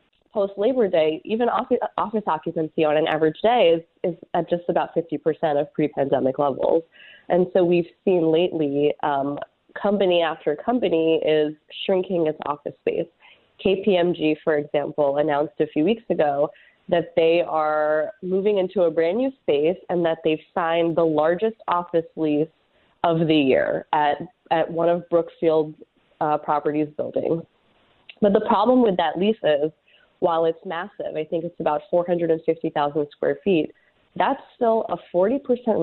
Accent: American